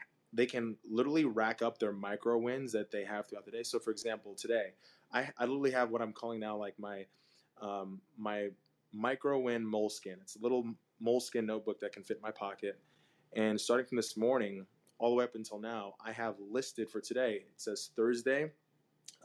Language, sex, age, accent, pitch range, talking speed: English, male, 20-39, American, 105-120 Hz, 200 wpm